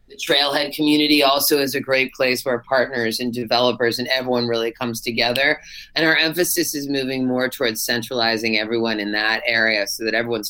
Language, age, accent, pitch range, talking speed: English, 30-49, American, 125-160 Hz, 175 wpm